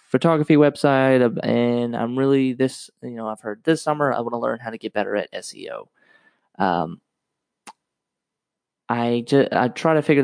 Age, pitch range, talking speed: 20-39, 110-135 Hz, 165 wpm